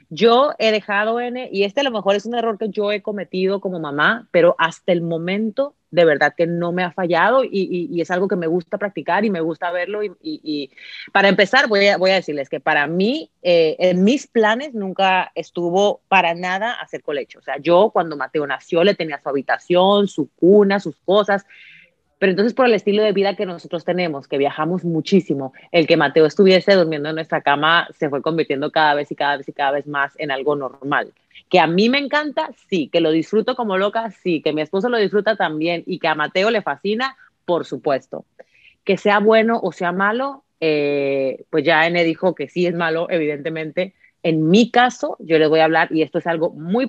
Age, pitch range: 30-49, 160-210 Hz